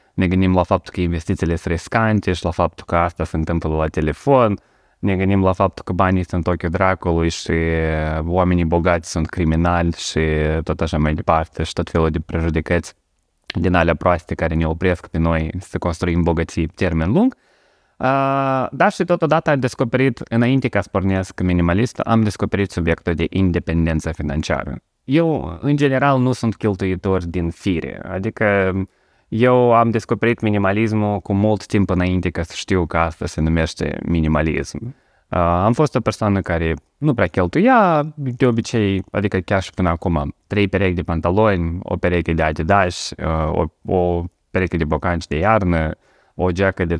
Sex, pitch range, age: male, 85-105 Hz, 20-39